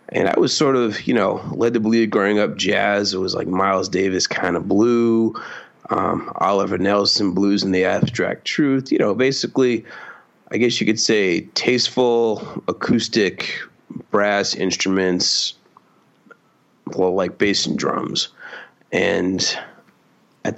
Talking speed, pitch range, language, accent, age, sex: 140 wpm, 95-115 Hz, English, American, 30-49, male